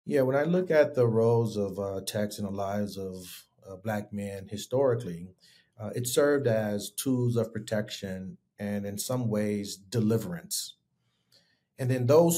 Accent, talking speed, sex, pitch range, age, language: American, 160 wpm, male, 105-120 Hz, 40-59, English